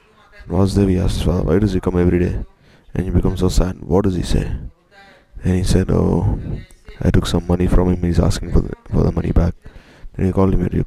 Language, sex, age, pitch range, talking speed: English, male, 20-39, 85-100 Hz, 245 wpm